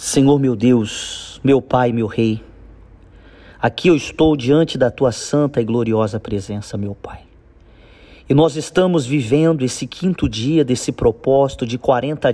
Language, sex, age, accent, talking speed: Portuguese, male, 40-59, Brazilian, 145 wpm